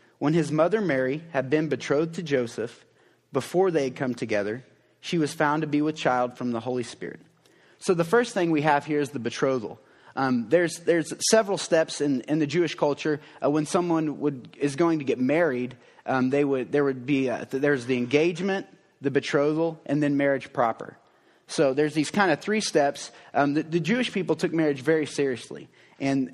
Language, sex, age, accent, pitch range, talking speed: English, male, 30-49, American, 135-170 Hz, 200 wpm